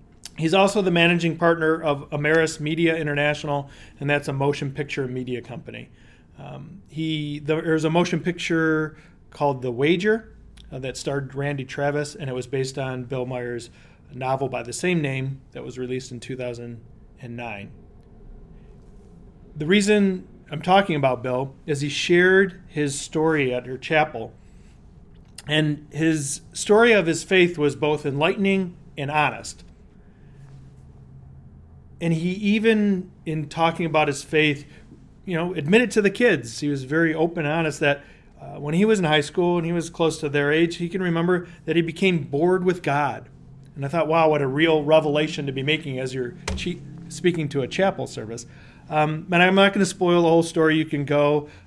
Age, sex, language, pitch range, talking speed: 40-59, male, English, 135-170 Hz, 170 wpm